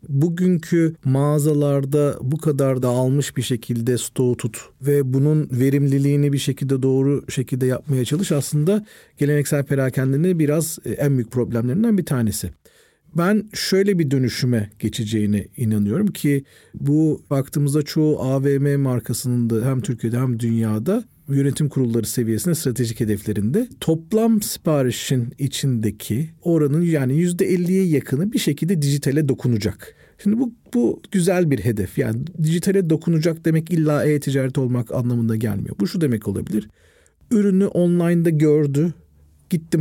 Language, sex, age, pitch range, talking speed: Turkish, male, 40-59, 125-160 Hz, 125 wpm